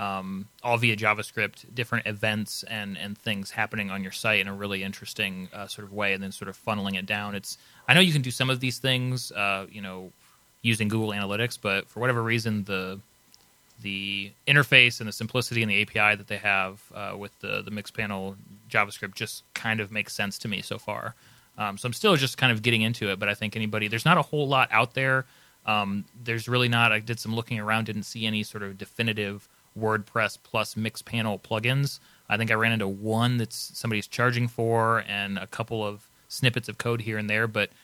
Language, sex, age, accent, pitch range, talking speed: English, male, 30-49, American, 100-120 Hz, 215 wpm